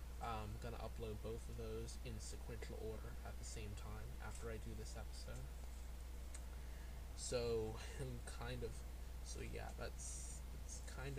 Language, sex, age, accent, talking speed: English, male, 20-39, American, 145 wpm